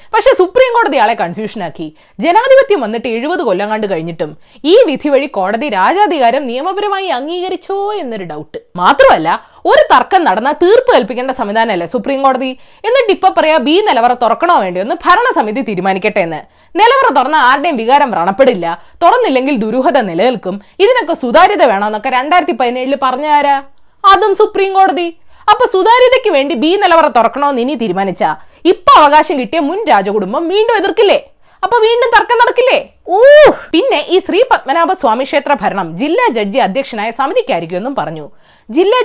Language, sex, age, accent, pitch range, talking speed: Malayalam, female, 20-39, native, 240-405 Hz, 140 wpm